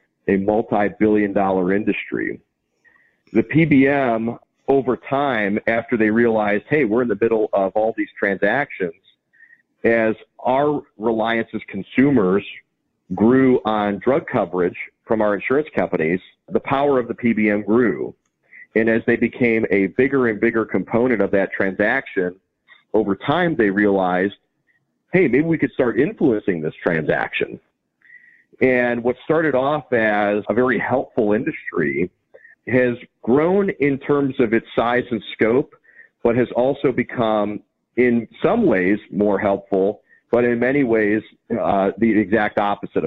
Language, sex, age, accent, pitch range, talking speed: English, male, 40-59, American, 105-125 Hz, 135 wpm